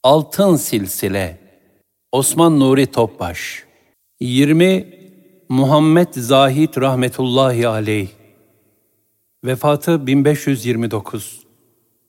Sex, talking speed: male, 60 wpm